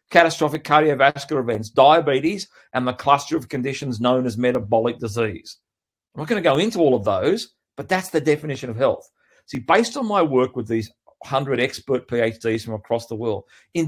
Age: 40-59